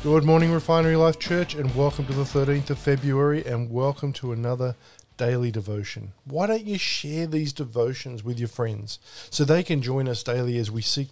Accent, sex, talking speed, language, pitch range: Australian, male, 195 wpm, English, 115-155 Hz